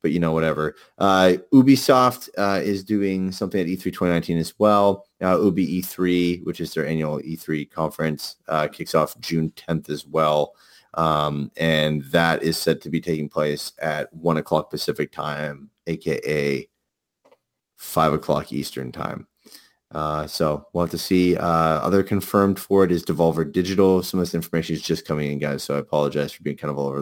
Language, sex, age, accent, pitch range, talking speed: English, male, 30-49, American, 75-90 Hz, 180 wpm